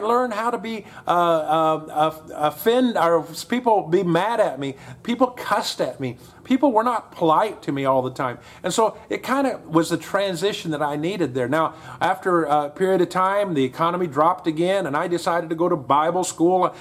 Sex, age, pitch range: male, 40-59, 160-220 Hz